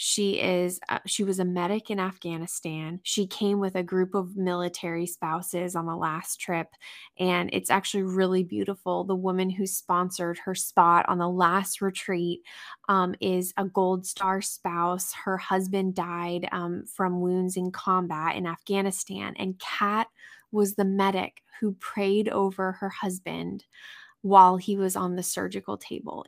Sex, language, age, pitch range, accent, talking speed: female, English, 20-39, 180-205 Hz, American, 160 wpm